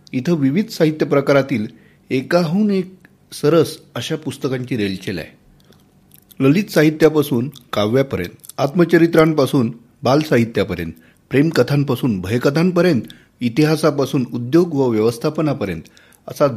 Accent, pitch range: native, 110-155 Hz